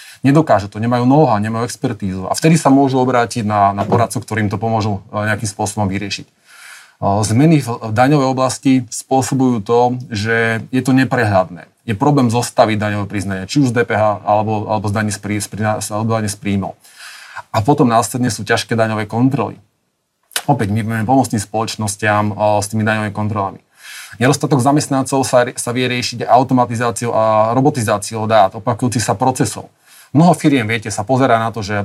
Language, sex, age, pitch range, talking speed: Slovak, male, 30-49, 110-130 Hz, 150 wpm